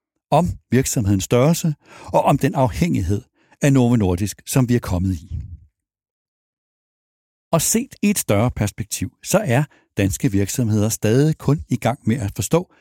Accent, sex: native, male